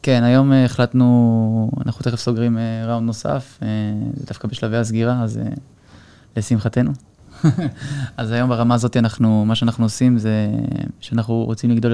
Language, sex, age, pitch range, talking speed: Hebrew, male, 20-39, 110-125 Hz, 130 wpm